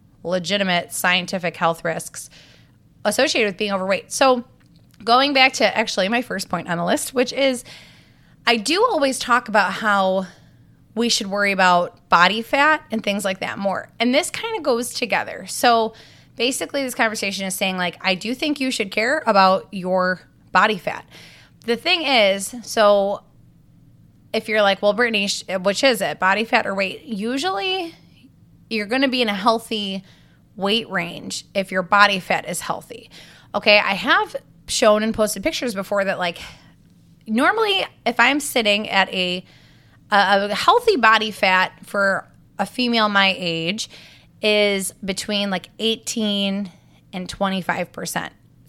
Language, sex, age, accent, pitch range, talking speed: English, female, 20-39, American, 190-245 Hz, 155 wpm